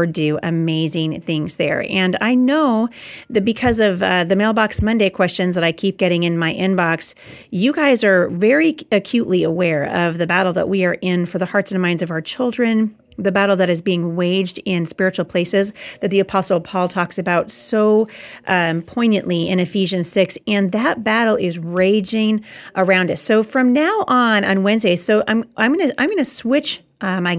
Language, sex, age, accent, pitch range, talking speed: English, female, 40-59, American, 175-225 Hz, 185 wpm